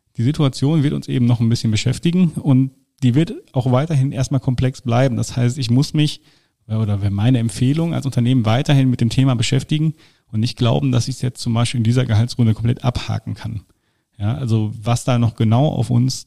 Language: German